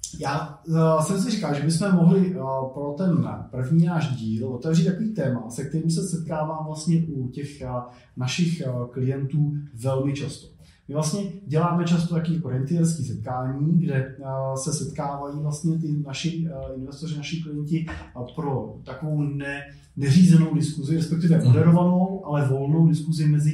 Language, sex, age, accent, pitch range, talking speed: Czech, male, 30-49, native, 125-160 Hz, 145 wpm